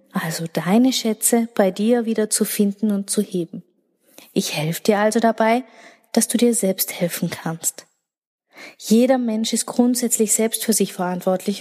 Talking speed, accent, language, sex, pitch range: 155 wpm, German, German, female, 195-245 Hz